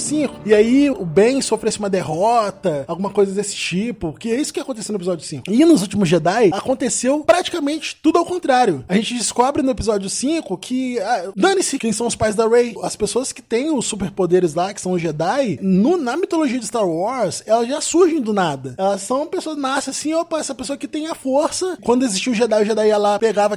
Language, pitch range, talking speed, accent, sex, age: Portuguese, 200-300 Hz, 220 wpm, Brazilian, male, 20-39